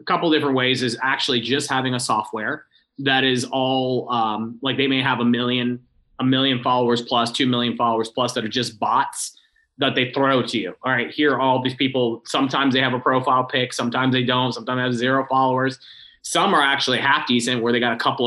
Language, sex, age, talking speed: English, male, 20-39, 225 wpm